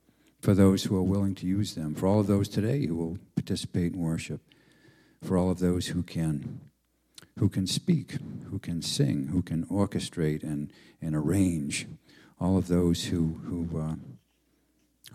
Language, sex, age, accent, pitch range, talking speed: English, male, 60-79, American, 80-105 Hz, 165 wpm